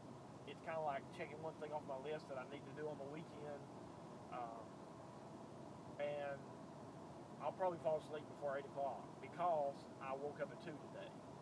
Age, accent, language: 40-59, American, English